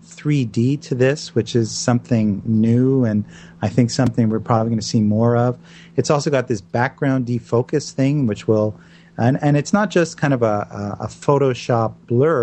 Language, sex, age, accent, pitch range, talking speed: English, male, 40-59, American, 115-140 Hz, 185 wpm